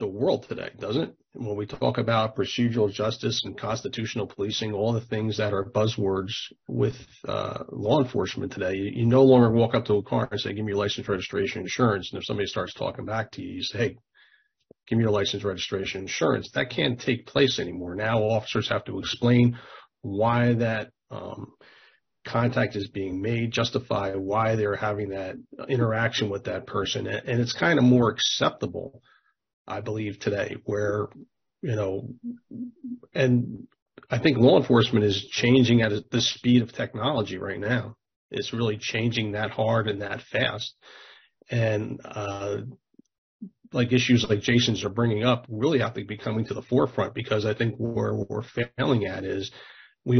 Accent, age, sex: American, 40-59, male